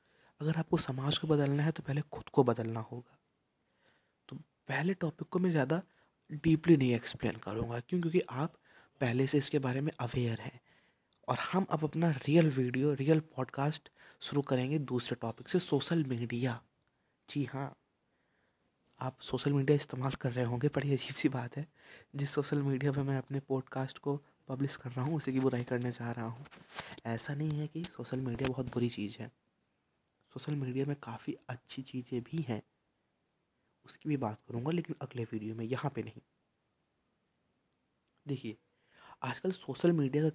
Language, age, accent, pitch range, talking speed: Hindi, 20-39, native, 125-155 Hz, 170 wpm